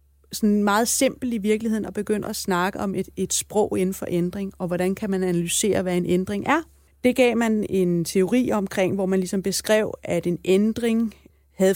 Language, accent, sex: Danish, native, female